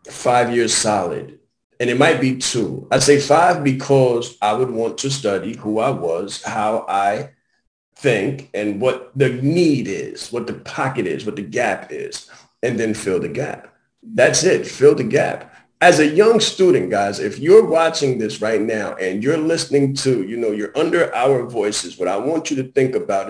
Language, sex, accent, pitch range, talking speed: English, male, American, 110-165 Hz, 190 wpm